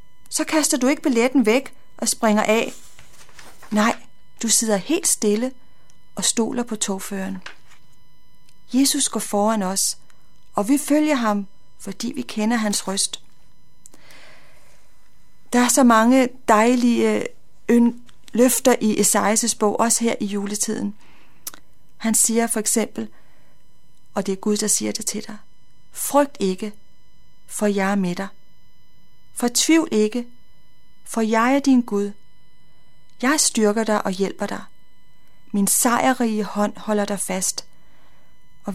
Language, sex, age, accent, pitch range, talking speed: Danish, female, 40-59, native, 205-245 Hz, 130 wpm